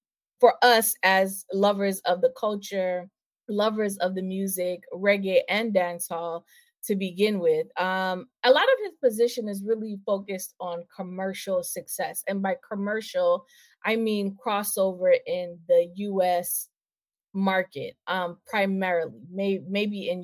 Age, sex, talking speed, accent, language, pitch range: 20-39, female, 130 wpm, American, English, 180-235 Hz